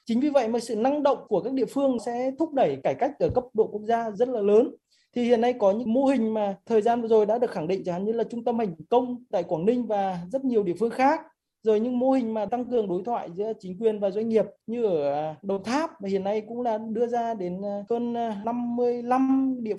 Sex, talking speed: male, 265 wpm